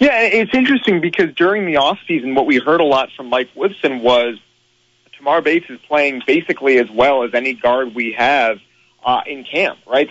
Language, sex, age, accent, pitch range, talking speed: English, male, 30-49, American, 125-155 Hz, 190 wpm